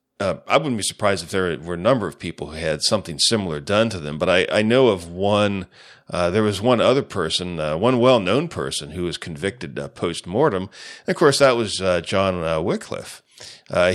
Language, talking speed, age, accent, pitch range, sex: English, 215 wpm, 40-59, American, 85-110 Hz, male